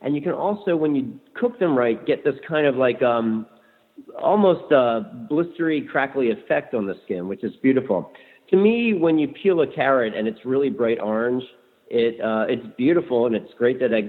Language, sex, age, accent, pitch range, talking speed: English, male, 50-69, American, 110-140 Hz, 195 wpm